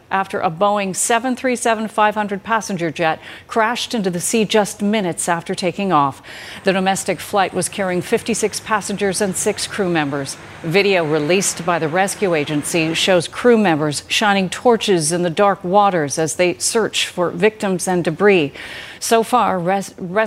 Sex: female